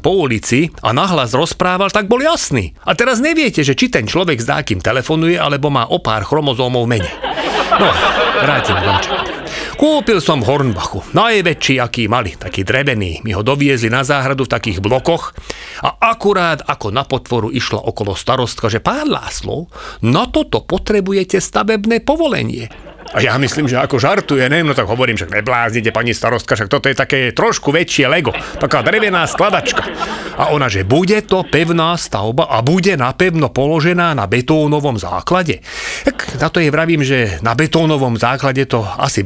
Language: English